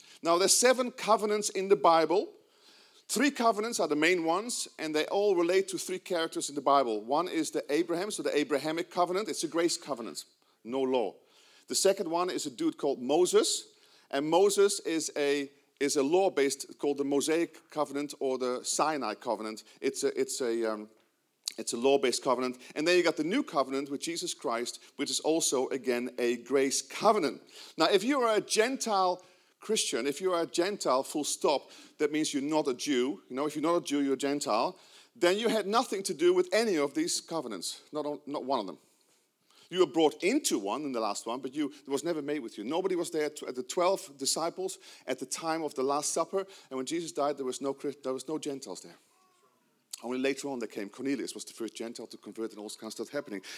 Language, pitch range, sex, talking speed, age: English, 140-220 Hz, male, 220 wpm, 40-59